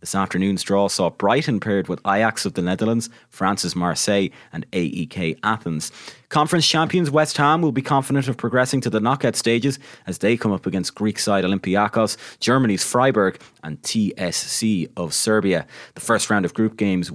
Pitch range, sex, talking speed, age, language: 100-135 Hz, male, 170 wpm, 30-49, English